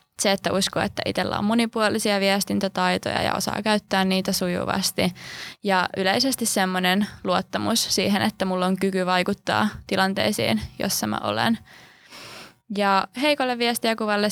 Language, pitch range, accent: Finnish, 185-215 Hz, native